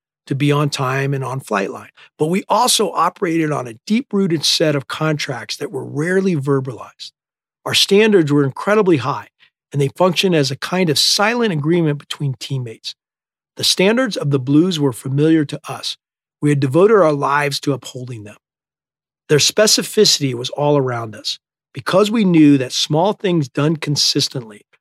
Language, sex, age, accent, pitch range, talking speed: English, male, 40-59, American, 140-180 Hz, 165 wpm